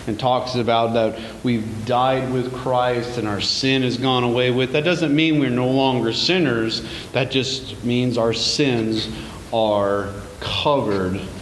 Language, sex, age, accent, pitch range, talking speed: English, male, 40-59, American, 100-125 Hz, 150 wpm